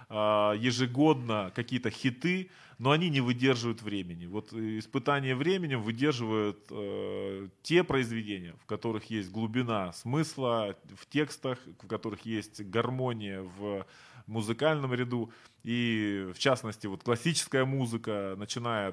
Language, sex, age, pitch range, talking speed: Ukrainian, male, 20-39, 105-130 Hz, 115 wpm